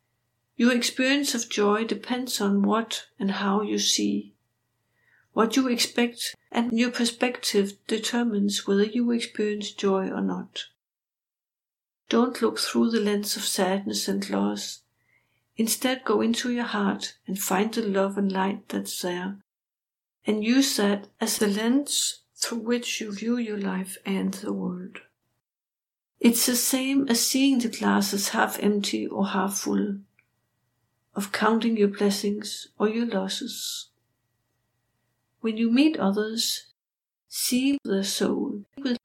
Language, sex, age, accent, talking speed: English, female, 60-79, Danish, 135 wpm